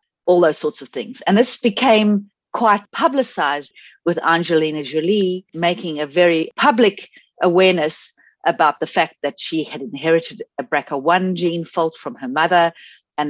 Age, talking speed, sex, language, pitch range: 50-69, 150 wpm, female, English, 140-190 Hz